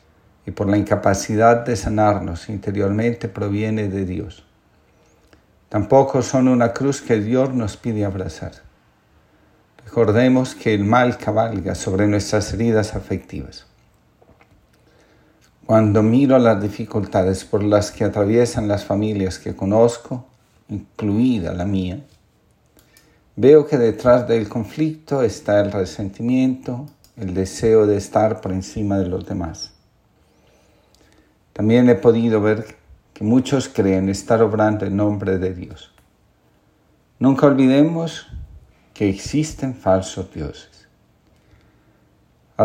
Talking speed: 115 wpm